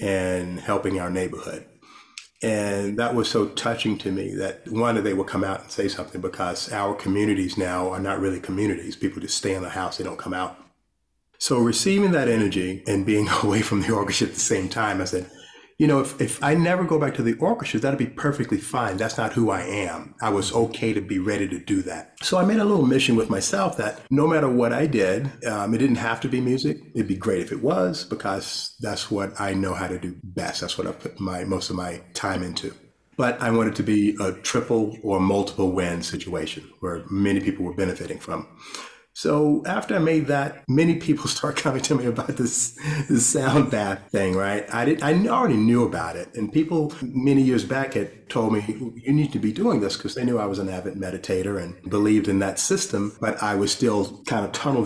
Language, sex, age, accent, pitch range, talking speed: English, male, 30-49, American, 95-130 Hz, 225 wpm